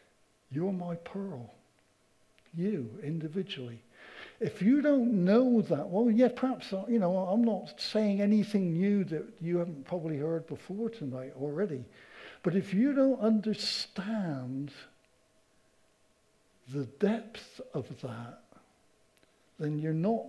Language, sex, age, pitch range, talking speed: English, male, 60-79, 145-225 Hz, 120 wpm